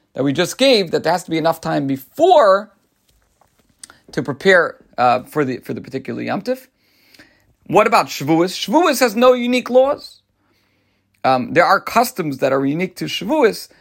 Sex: male